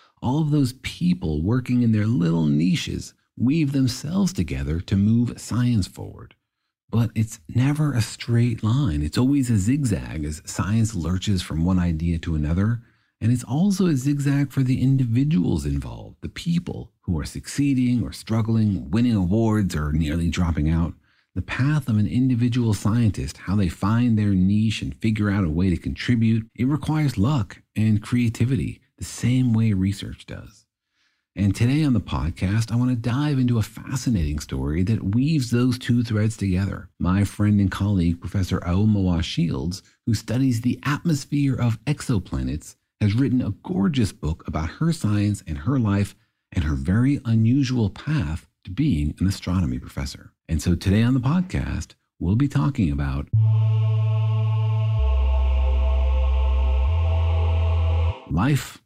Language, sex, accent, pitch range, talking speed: English, male, American, 90-125 Hz, 150 wpm